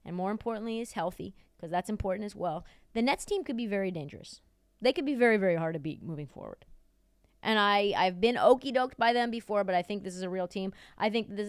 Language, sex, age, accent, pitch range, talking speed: English, female, 20-39, American, 180-245 Hz, 235 wpm